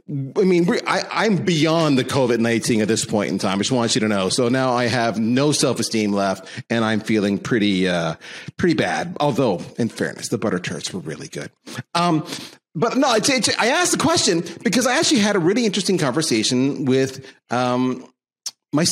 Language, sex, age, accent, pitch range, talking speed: English, male, 40-59, American, 105-155 Hz, 205 wpm